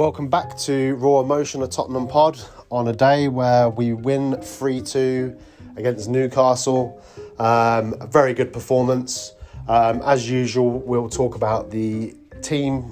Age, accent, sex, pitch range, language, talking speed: 30-49, British, male, 110-130 Hz, English, 135 wpm